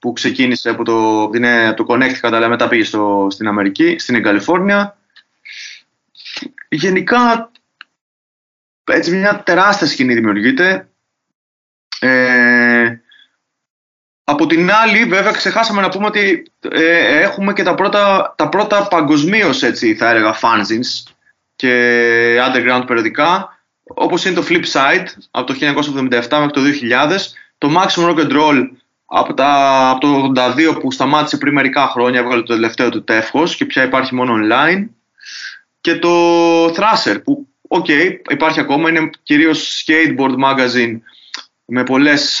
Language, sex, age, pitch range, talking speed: Greek, male, 20-39, 120-185 Hz, 130 wpm